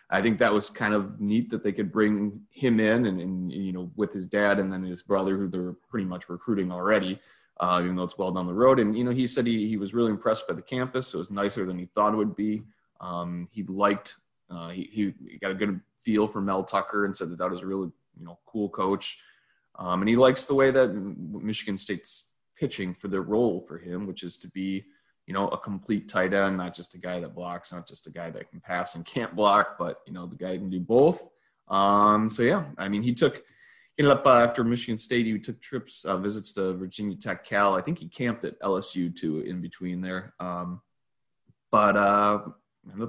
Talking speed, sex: 240 wpm, male